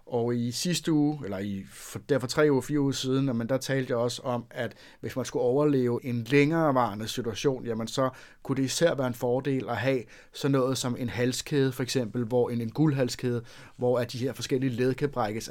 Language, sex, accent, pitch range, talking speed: Danish, male, native, 115-135 Hz, 215 wpm